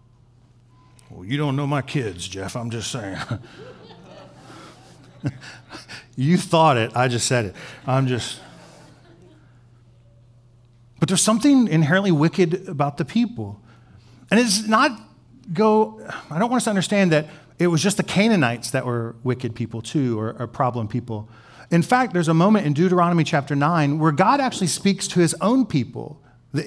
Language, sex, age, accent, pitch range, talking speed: English, male, 40-59, American, 120-185 Hz, 155 wpm